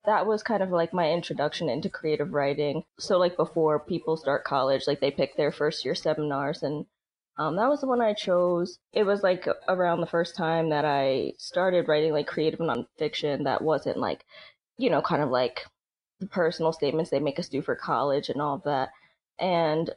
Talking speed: 200 wpm